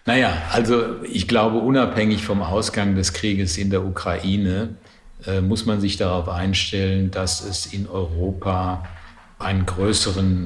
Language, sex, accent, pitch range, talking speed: German, male, German, 85-100 Hz, 140 wpm